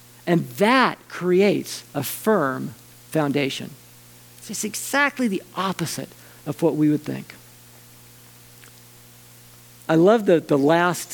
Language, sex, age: English, male, 50-69